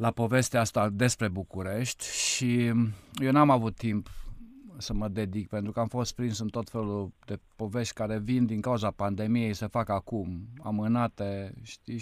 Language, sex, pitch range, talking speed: Romanian, male, 100-120 Hz, 165 wpm